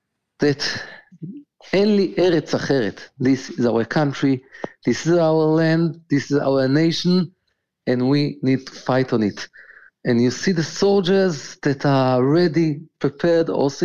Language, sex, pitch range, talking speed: English, male, 125-165 Hz, 140 wpm